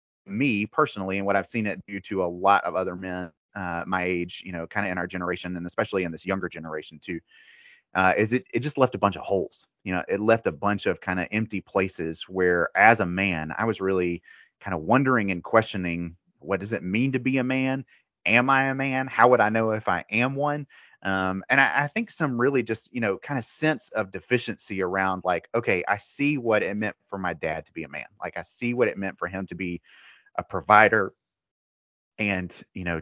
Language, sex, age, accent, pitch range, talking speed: English, male, 30-49, American, 90-115 Hz, 235 wpm